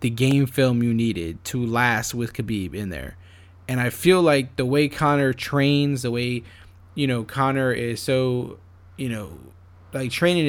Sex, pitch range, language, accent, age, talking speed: male, 110-140 Hz, English, American, 20-39, 170 wpm